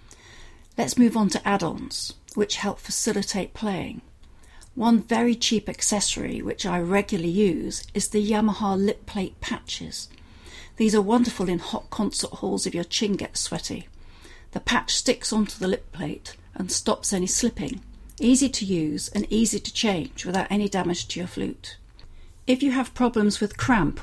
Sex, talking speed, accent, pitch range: female, 160 wpm, British, 195-230 Hz